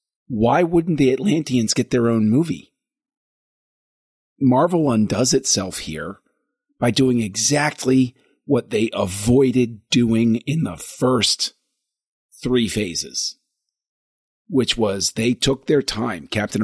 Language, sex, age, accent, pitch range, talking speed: English, male, 40-59, American, 105-145 Hz, 110 wpm